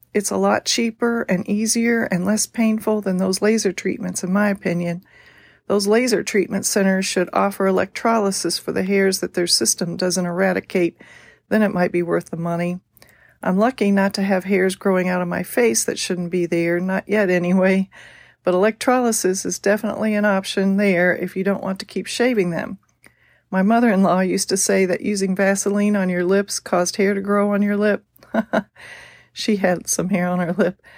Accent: American